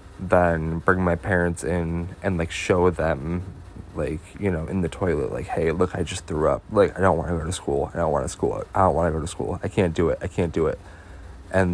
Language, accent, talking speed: English, American, 260 wpm